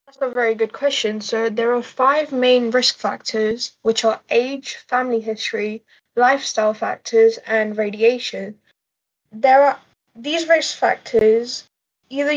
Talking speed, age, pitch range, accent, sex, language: 130 wpm, 10-29, 220-250 Hz, British, female, English